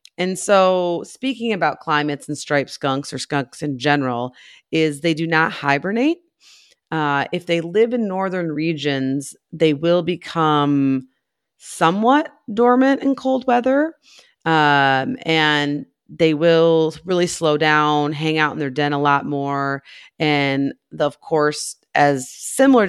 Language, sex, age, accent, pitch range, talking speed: English, female, 30-49, American, 135-165 Hz, 135 wpm